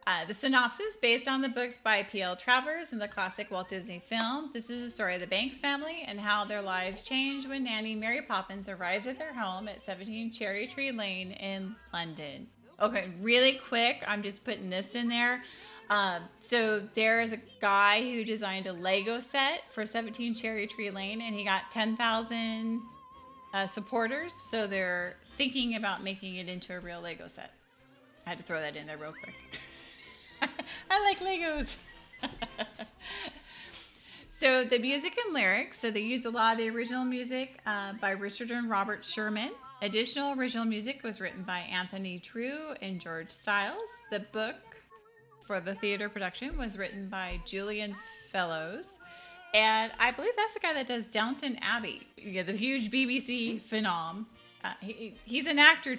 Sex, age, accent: female, 20-39, American